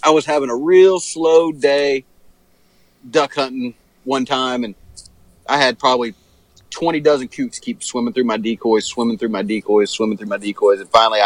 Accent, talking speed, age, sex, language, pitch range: American, 175 wpm, 30-49, male, English, 115-155 Hz